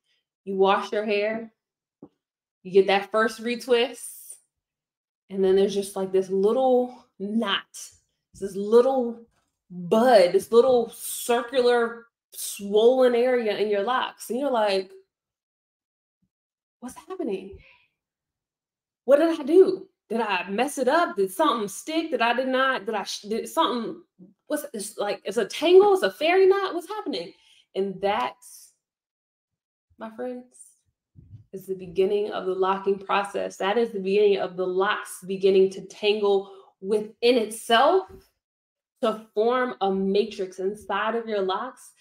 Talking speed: 135 wpm